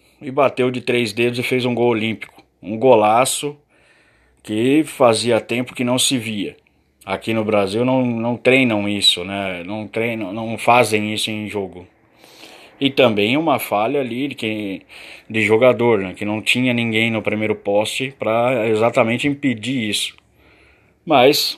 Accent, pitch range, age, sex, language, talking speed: Brazilian, 105-120 Hz, 20-39, male, Portuguese, 150 wpm